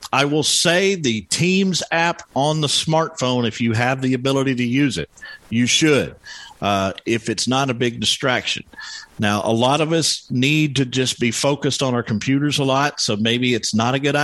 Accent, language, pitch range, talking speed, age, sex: American, English, 110-135 Hz, 200 wpm, 50-69, male